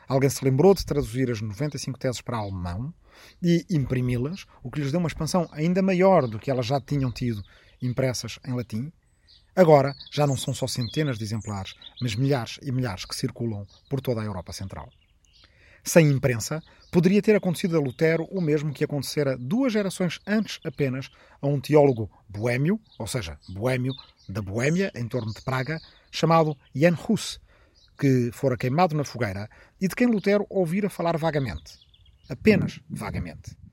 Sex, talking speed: male, 165 wpm